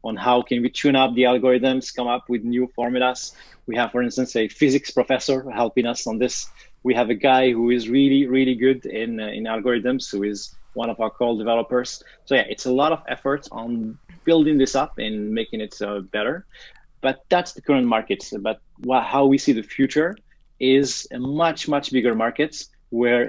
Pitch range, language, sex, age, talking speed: 110-135 Hz, English, male, 20-39, 205 wpm